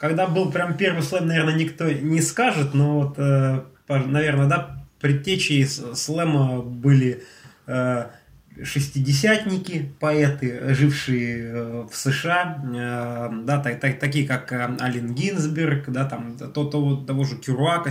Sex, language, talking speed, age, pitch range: male, Russian, 105 wpm, 20-39, 125-150 Hz